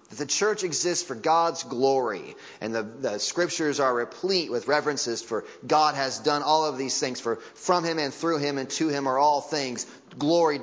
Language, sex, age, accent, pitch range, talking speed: English, male, 30-49, American, 140-195 Hz, 205 wpm